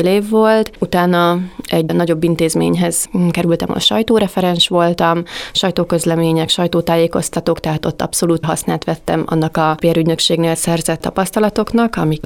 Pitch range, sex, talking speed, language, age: 160-185 Hz, female, 115 wpm, Hungarian, 30-49